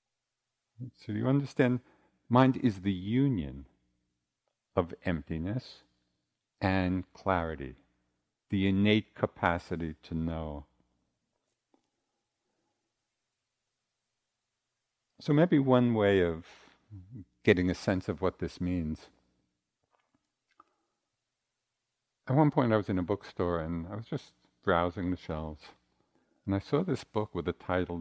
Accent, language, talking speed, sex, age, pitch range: American, English, 110 wpm, male, 50-69, 80-115 Hz